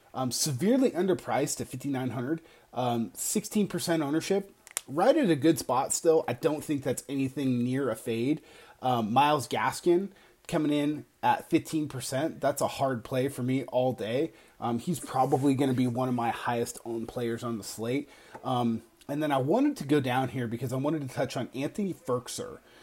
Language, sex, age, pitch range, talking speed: English, male, 30-49, 125-160 Hz, 180 wpm